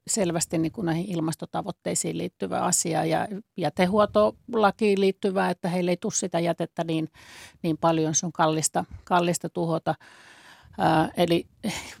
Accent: native